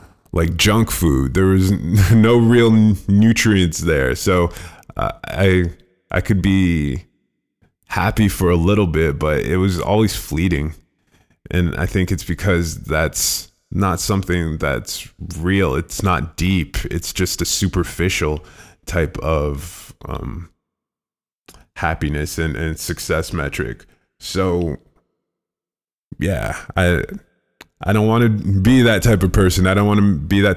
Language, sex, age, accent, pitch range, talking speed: English, male, 20-39, American, 80-100 Hz, 135 wpm